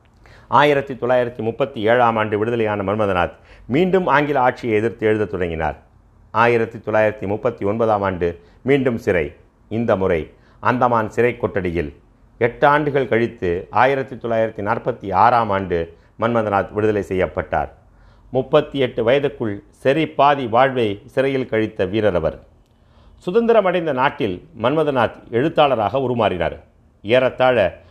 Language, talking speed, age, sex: Tamil, 100 wpm, 50-69, male